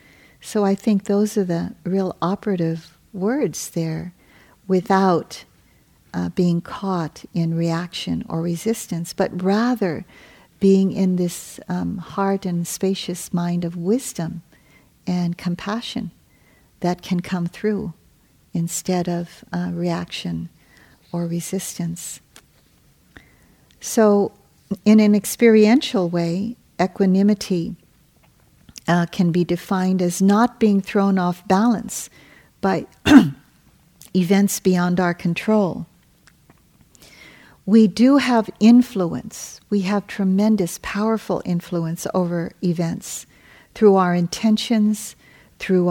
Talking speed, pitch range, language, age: 100 wpm, 175-205 Hz, English, 50-69